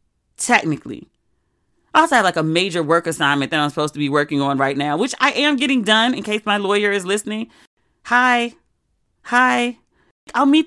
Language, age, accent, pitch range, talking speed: English, 30-49, American, 190-255 Hz, 185 wpm